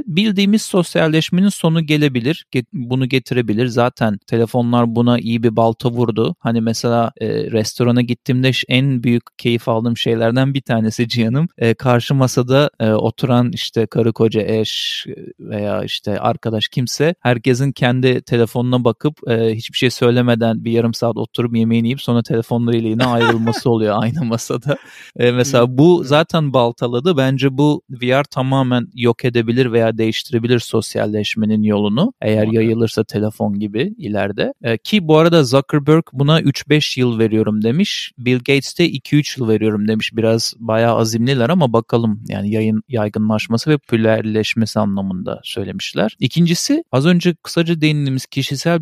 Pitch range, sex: 115-145 Hz, male